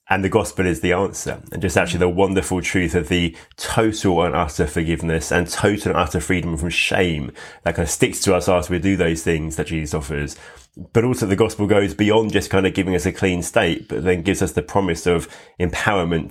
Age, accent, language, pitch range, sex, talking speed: 20-39, British, English, 85-100 Hz, male, 225 wpm